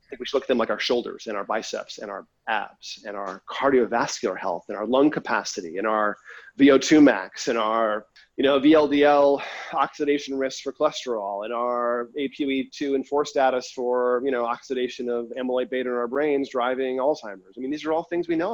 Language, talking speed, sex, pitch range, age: English, 205 wpm, male, 110-135 Hz, 30-49